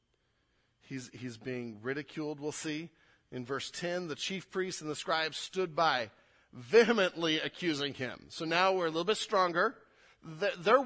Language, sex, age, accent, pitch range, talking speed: English, male, 40-59, American, 170-220 Hz, 155 wpm